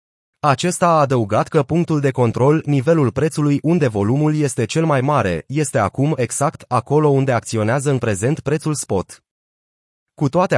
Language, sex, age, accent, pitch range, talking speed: Romanian, male, 30-49, native, 120-155 Hz, 155 wpm